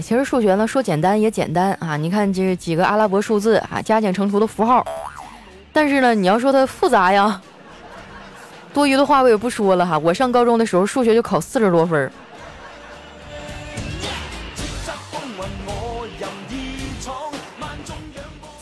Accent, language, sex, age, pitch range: native, Chinese, female, 20-39, 190-260 Hz